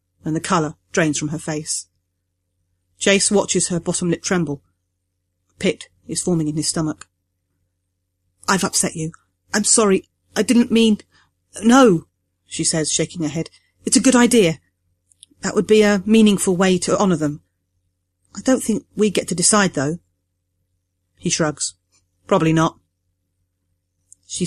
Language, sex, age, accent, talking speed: English, female, 30-49, British, 145 wpm